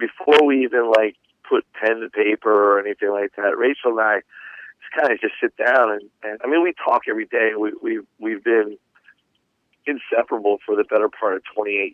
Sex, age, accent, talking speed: male, 50-69, American, 190 wpm